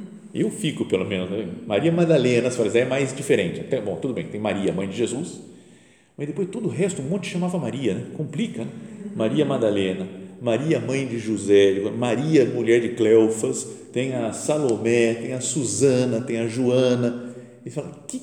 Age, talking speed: 50-69, 180 wpm